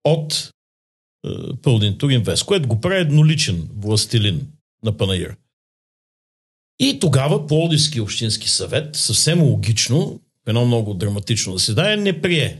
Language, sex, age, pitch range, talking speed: Bulgarian, male, 50-69, 110-155 Hz, 115 wpm